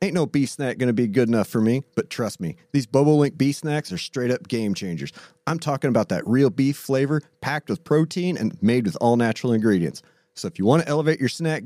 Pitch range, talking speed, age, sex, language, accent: 110-150 Hz, 245 wpm, 40-59, male, English, American